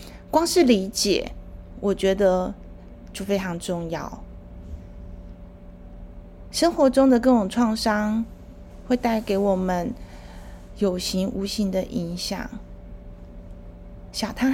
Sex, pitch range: female, 195-235 Hz